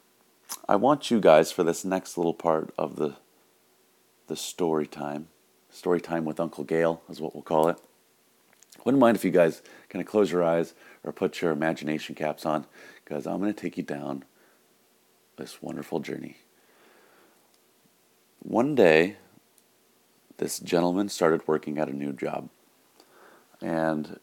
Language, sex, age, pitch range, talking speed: English, male, 30-49, 75-85 Hz, 150 wpm